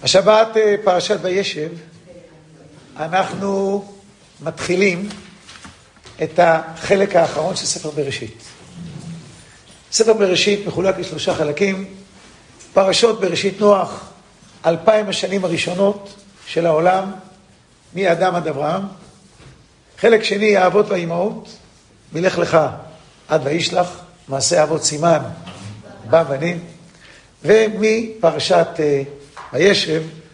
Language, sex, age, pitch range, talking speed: English, male, 50-69, 155-200 Hz, 85 wpm